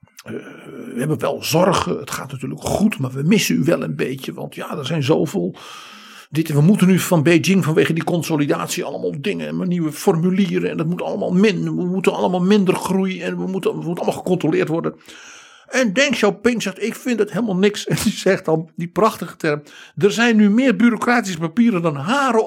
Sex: male